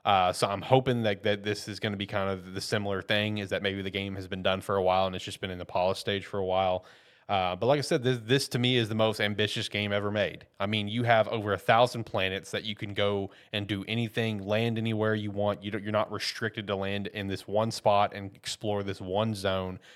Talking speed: 260 wpm